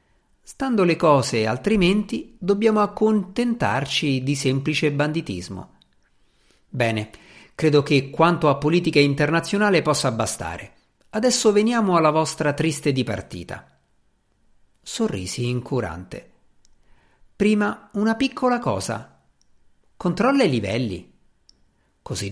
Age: 50-69